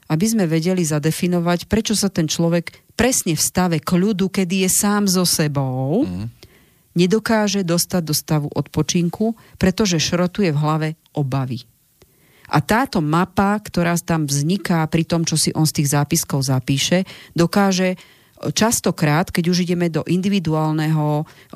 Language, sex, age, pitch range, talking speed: Slovak, female, 40-59, 150-180 Hz, 140 wpm